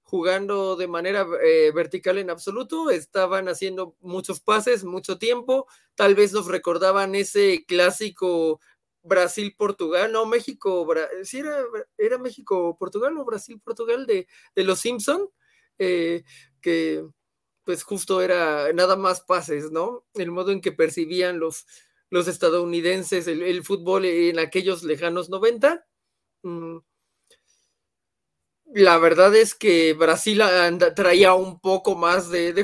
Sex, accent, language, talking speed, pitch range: male, Mexican, Spanish, 130 wpm, 170-215 Hz